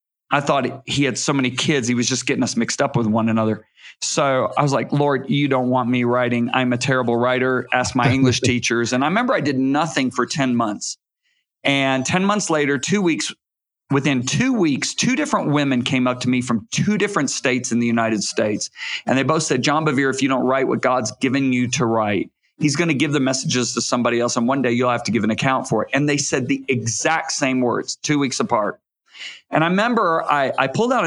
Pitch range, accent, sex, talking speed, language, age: 125-145 Hz, American, male, 235 wpm, English, 40-59